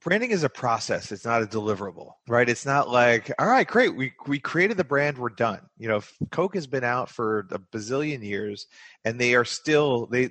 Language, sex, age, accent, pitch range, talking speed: English, male, 30-49, American, 110-125 Hz, 215 wpm